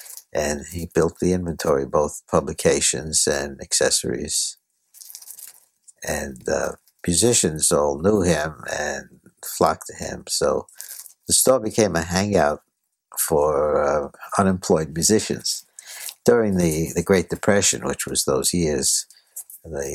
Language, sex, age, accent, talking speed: English, male, 60-79, American, 115 wpm